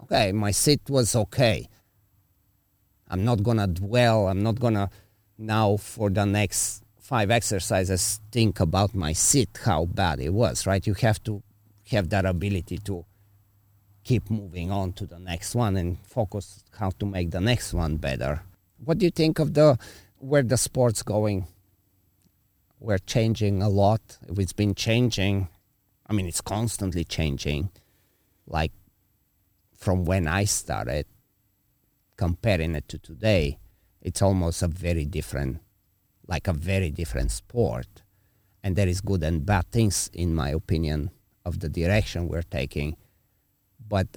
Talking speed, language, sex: 145 wpm, English, male